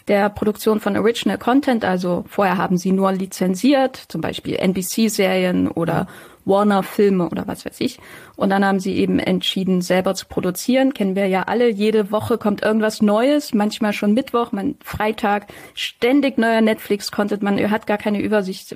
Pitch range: 200-230 Hz